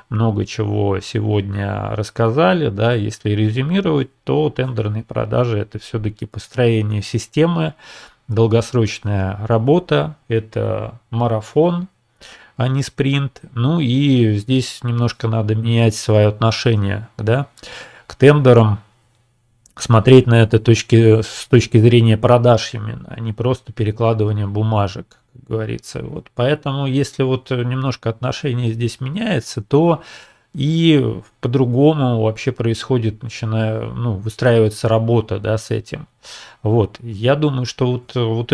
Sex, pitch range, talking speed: male, 110-130 Hz, 110 wpm